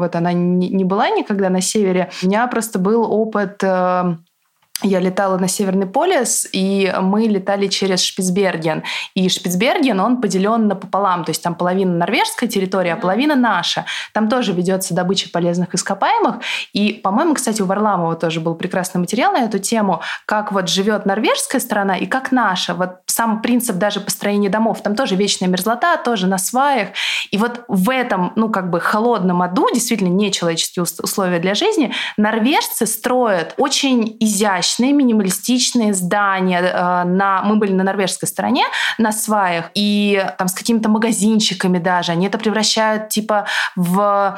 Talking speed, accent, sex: 155 wpm, native, female